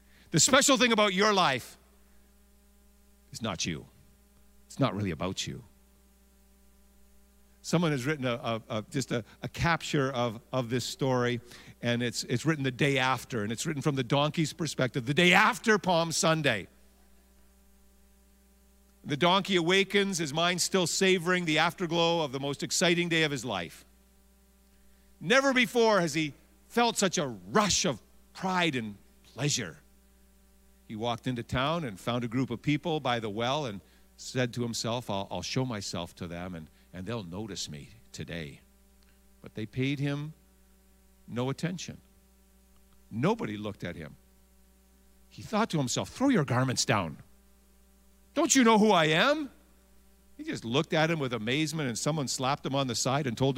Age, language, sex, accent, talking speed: 50-69, English, male, American, 160 wpm